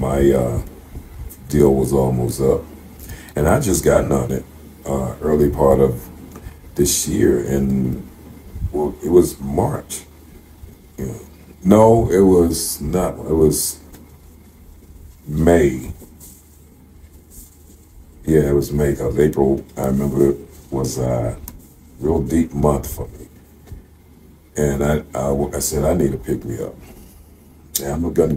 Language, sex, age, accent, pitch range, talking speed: English, male, 50-69, American, 70-90 Hz, 125 wpm